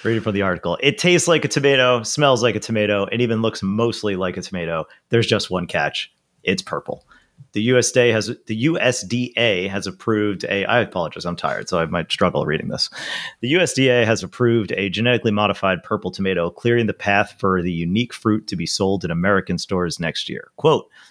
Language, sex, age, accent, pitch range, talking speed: English, male, 30-49, American, 95-120 Hz, 195 wpm